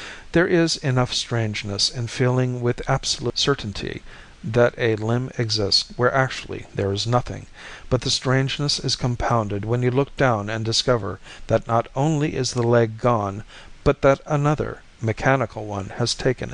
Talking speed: 155 wpm